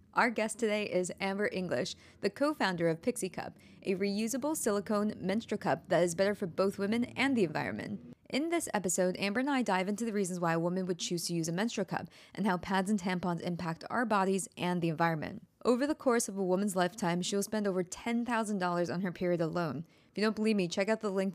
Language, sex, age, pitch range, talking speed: English, female, 20-39, 180-225 Hz, 225 wpm